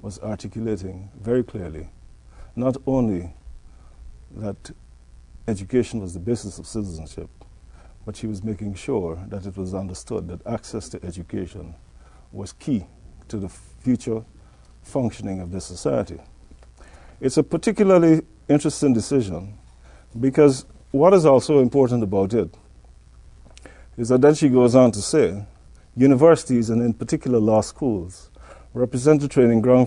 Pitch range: 85-130 Hz